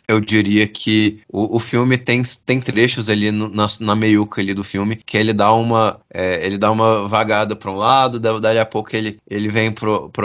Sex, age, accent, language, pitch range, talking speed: male, 20-39, Brazilian, Portuguese, 110-135 Hz, 210 wpm